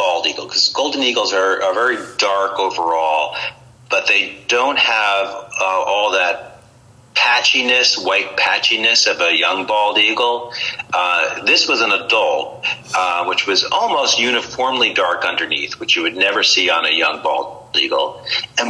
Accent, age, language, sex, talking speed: American, 40-59, English, male, 155 wpm